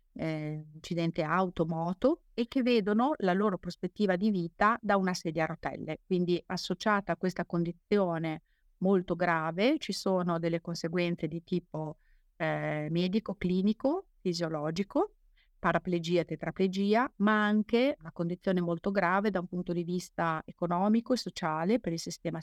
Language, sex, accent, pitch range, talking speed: Italian, female, native, 170-205 Hz, 145 wpm